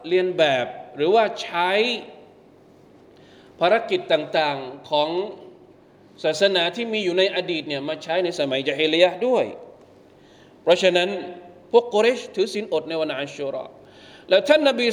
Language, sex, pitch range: Thai, male, 160-215 Hz